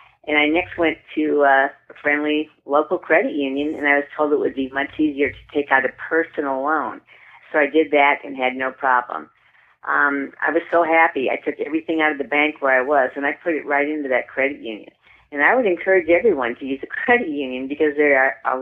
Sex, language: female, English